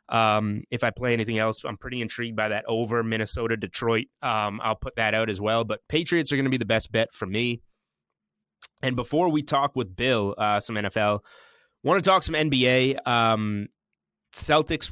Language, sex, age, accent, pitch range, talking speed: English, male, 20-39, American, 110-130 Hz, 190 wpm